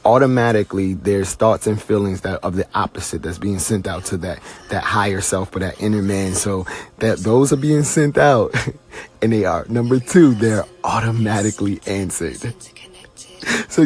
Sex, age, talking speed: male, 30-49, 170 wpm